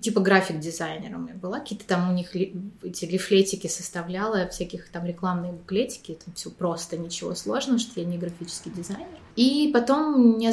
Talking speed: 165 wpm